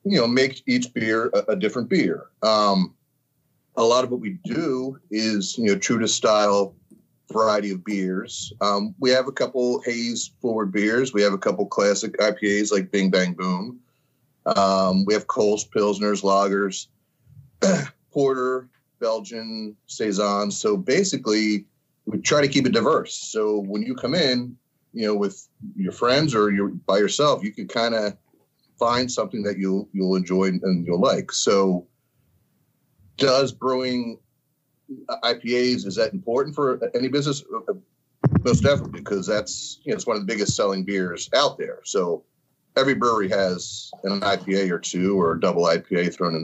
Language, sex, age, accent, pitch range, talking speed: English, male, 30-49, American, 100-135 Hz, 165 wpm